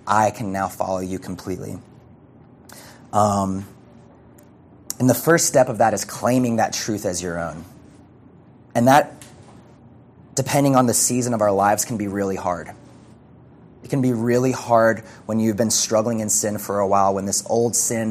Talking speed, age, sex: 170 wpm, 30-49, male